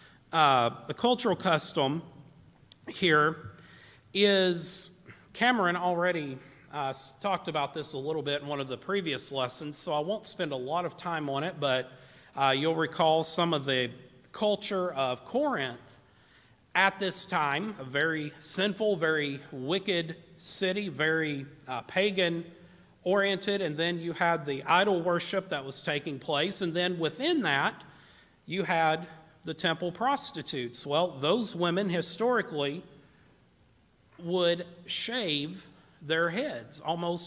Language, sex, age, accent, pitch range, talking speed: English, male, 40-59, American, 145-190 Hz, 130 wpm